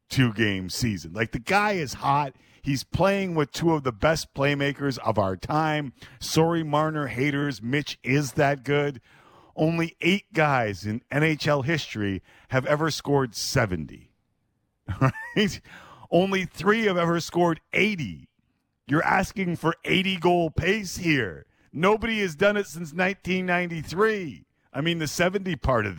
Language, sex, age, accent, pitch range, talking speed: English, male, 40-59, American, 105-165 Hz, 140 wpm